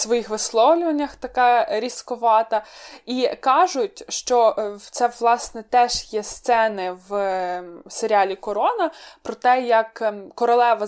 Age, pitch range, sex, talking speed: 20-39, 210-255 Hz, female, 105 wpm